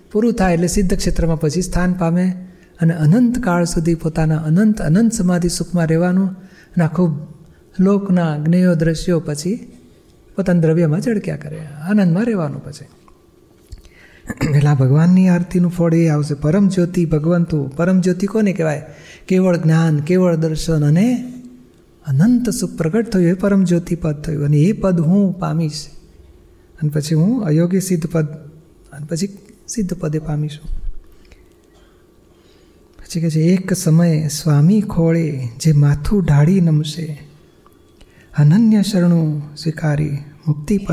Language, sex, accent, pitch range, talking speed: Gujarati, male, native, 155-185 Hz, 115 wpm